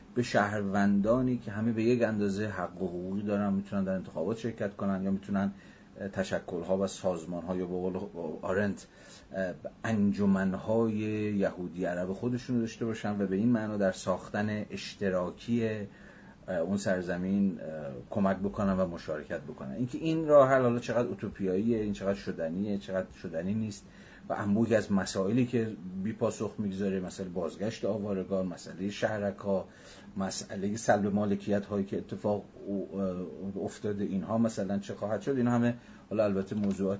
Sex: male